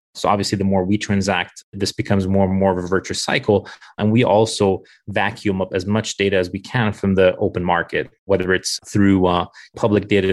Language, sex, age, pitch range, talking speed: English, male, 30-49, 95-105 Hz, 210 wpm